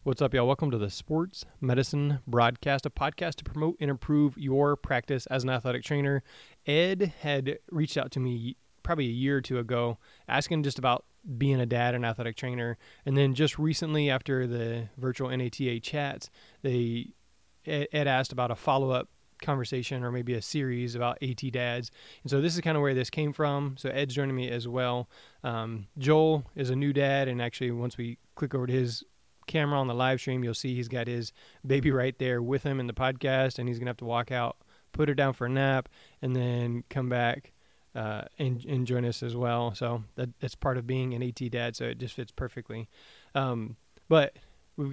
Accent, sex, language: American, male, English